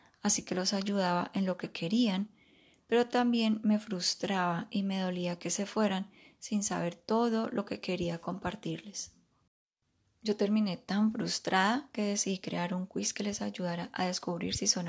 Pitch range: 180-220 Hz